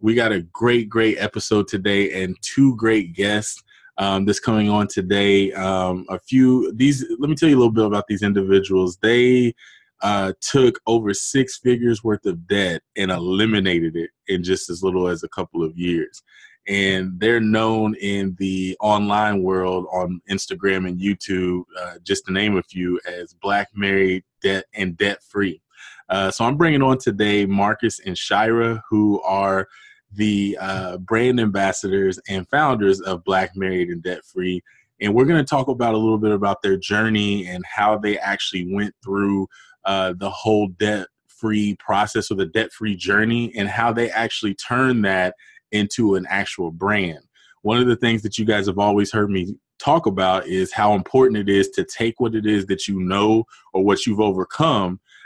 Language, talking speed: English, 180 wpm